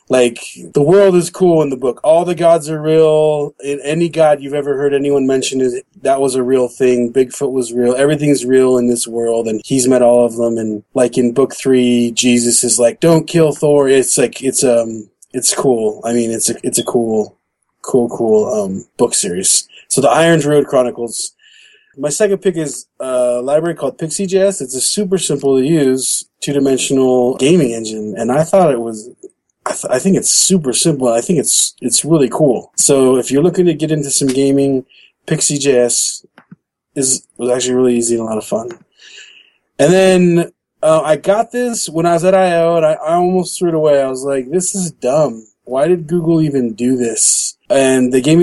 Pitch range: 125-165 Hz